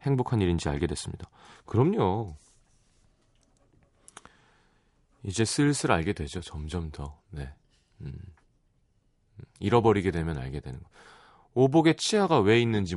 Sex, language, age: male, Korean, 30-49